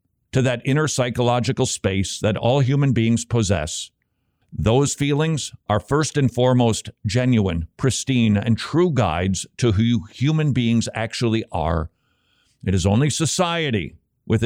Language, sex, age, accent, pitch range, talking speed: English, male, 50-69, American, 100-135 Hz, 135 wpm